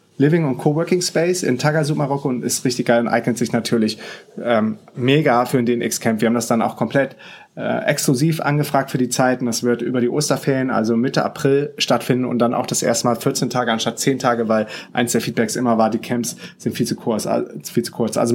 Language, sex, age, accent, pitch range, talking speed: German, male, 30-49, German, 120-140 Hz, 225 wpm